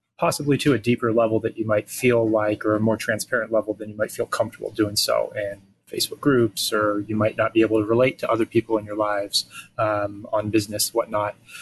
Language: English